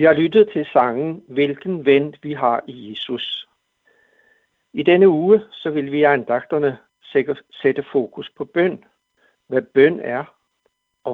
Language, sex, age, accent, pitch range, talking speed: Danish, male, 60-79, native, 125-165 Hz, 150 wpm